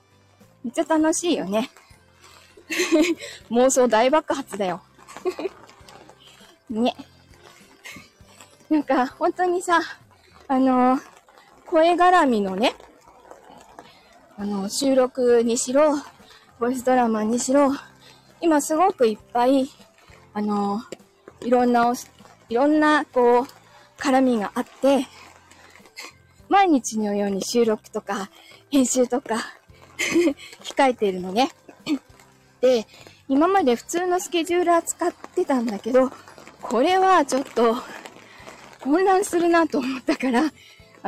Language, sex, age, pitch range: Japanese, female, 20-39, 235-320 Hz